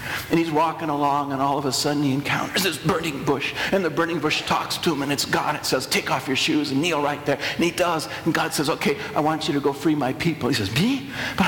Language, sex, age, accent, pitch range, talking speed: English, male, 50-69, American, 145-230 Hz, 275 wpm